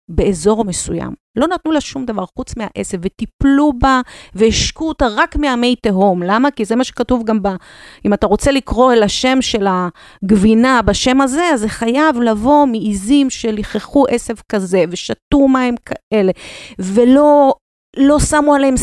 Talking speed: 155 wpm